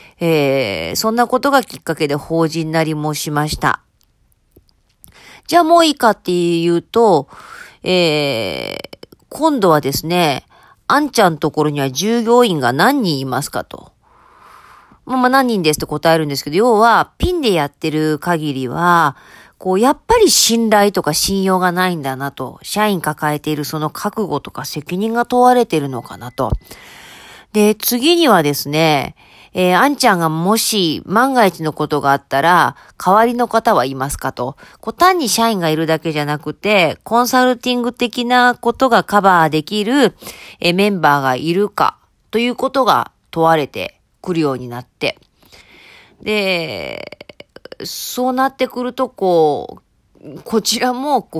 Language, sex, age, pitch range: Japanese, female, 40-59, 150-240 Hz